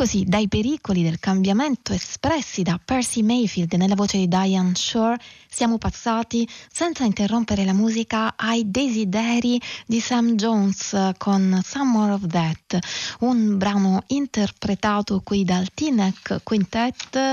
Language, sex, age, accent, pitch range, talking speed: Italian, female, 20-39, native, 180-225 Hz, 130 wpm